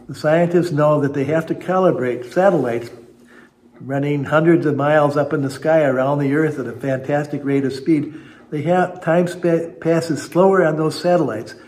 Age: 60-79